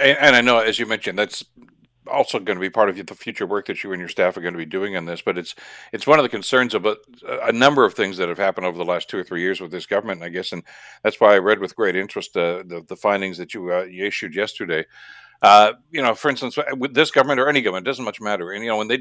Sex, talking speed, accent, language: male, 295 wpm, American, English